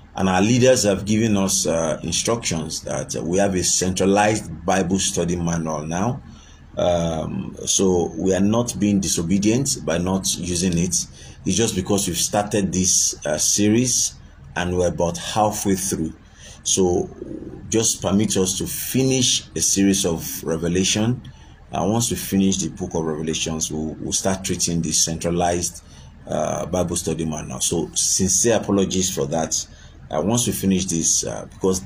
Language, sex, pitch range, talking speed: English, male, 80-100 Hz, 155 wpm